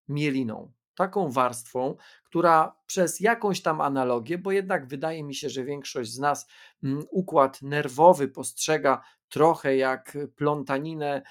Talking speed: 120 wpm